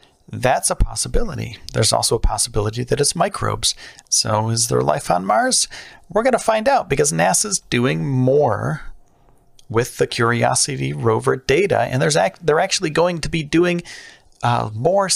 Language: English